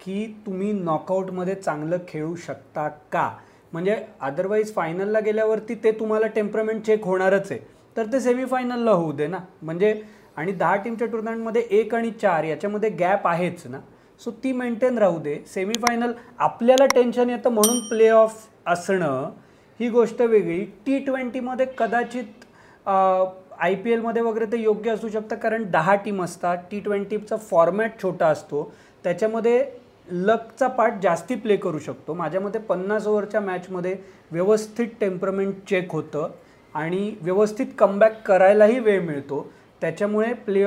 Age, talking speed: 30-49, 145 wpm